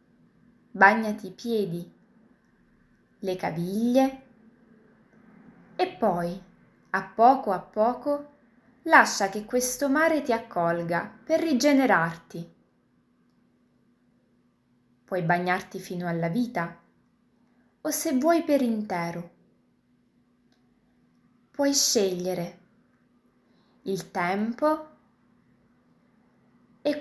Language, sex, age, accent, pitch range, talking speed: Italian, female, 20-39, native, 190-255 Hz, 75 wpm